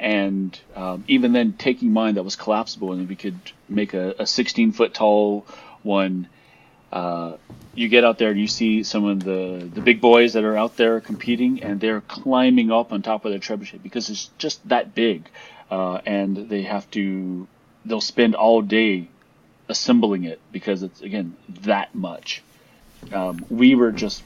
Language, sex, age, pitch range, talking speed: English, male, 30-49, 95-110 Hz, 180 wpm